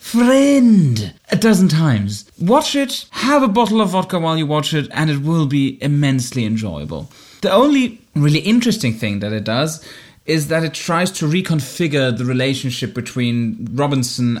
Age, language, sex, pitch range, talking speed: 20-39, English, male, 115-160 Hz, 165 wpm